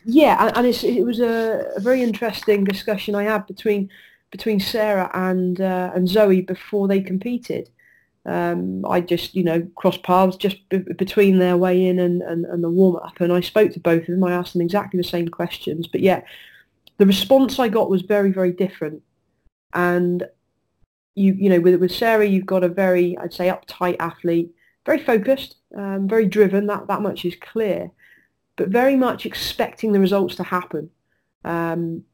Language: English